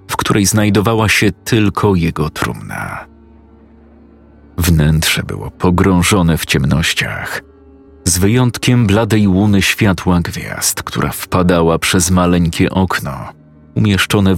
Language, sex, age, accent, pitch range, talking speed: Polish, male, 40-59, native, 80-105 Hz, 100 wpm